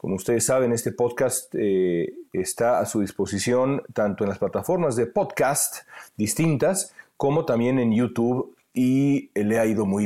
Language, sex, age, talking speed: Spanish, male, 40-59, 160 wpm